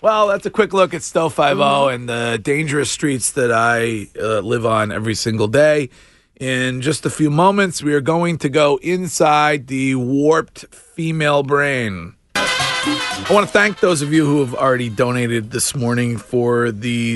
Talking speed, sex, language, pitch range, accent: 180 wpm, male, English, 105-135 Hz, American